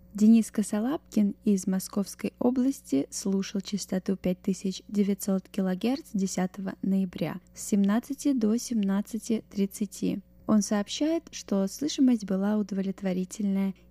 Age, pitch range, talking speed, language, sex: 10-29, 190-225 Hz, 90 wpm, Russian, female